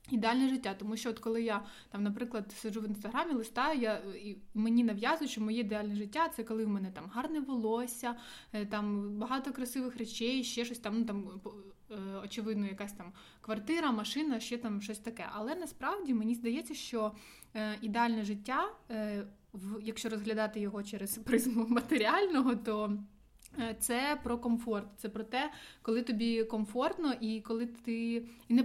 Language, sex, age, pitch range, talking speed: Ukrainian, female, 20-39, 205-240 Hz, 155 wpm